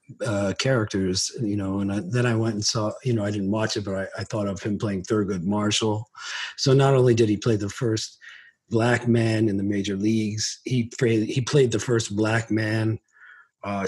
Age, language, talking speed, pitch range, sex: 40-59, English, 210 wpm, 105-125 Hz, male